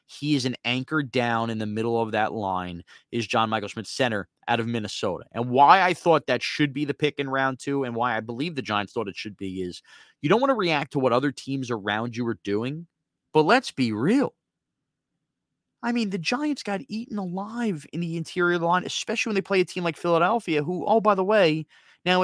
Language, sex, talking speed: English, male, 225 wpm